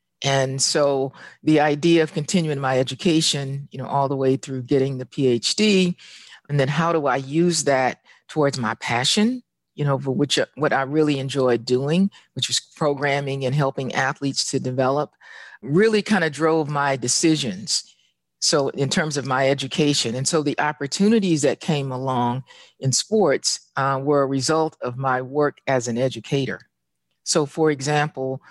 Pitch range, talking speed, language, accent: 130-155 Hz, 165 wpm, English, American